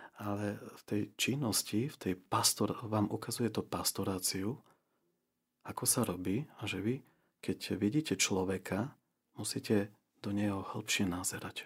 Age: 40-59